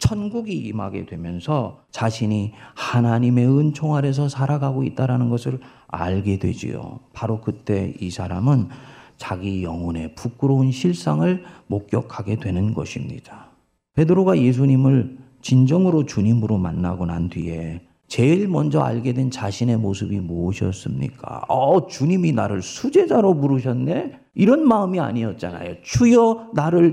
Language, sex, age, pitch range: Korean, male, 40-59, 110-175 Hz